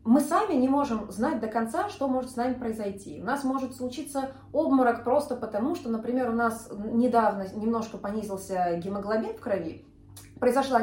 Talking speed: 165 wpm